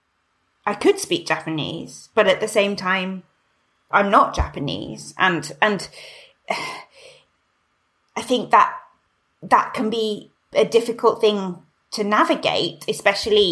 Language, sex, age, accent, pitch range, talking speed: English, female, 20-39, British, 160-225 Hz, 115 wpm